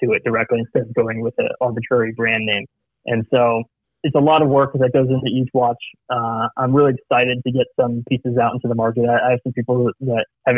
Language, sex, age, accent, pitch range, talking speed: English, male, 20-39, American, 120-130 Hz, 235 wpm